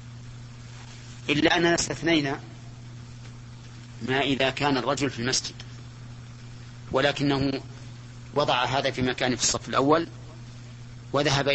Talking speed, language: 95 wpm, Arabic